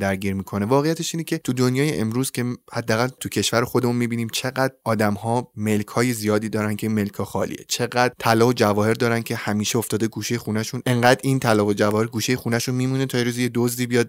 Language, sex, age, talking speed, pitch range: Persian, male, 20-39, 195 wpm, 110-145 Hz